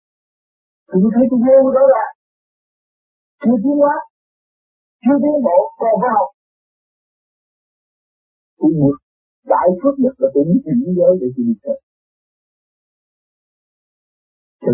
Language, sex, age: Vietnamese, male, 50-69